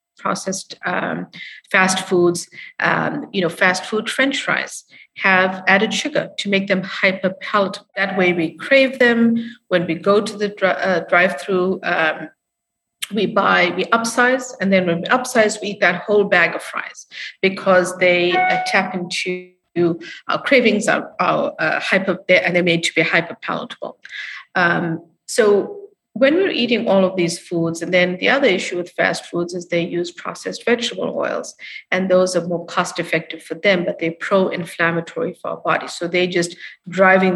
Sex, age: female, 50-69